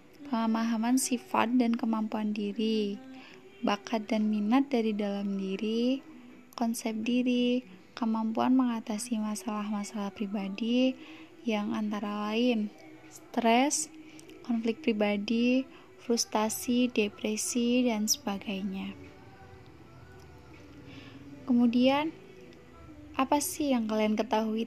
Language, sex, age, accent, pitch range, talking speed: Indonesian, female, 10-29, native, 215-255 Hz, 80 wpm